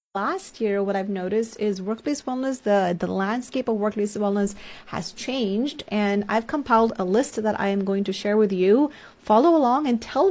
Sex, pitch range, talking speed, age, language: female, 200-245 Hz, 190 wpm, 30-49, English